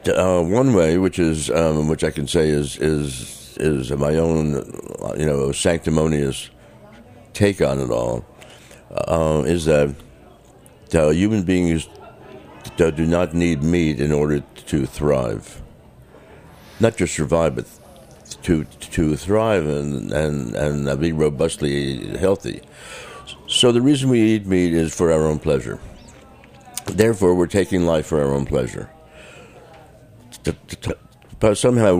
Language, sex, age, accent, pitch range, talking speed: English, male, 60-79, American, 75-95 Hz, 130 wpm